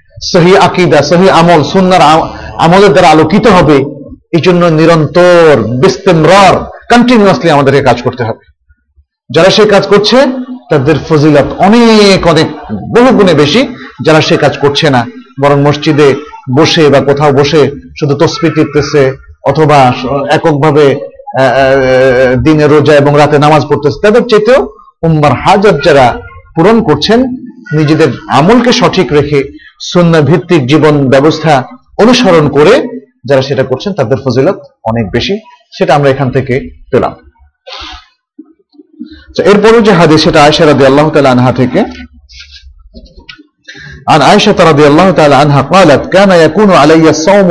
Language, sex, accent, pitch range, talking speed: Bengali, male, native, 140-195 Hz, 55 wpm